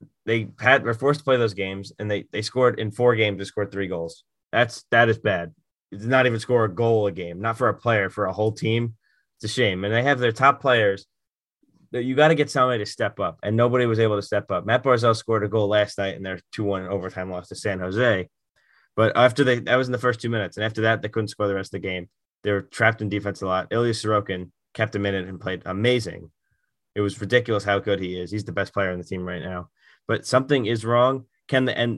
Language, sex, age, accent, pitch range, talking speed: English, male, 20-39, American, 100-120 Hz, 260 wpm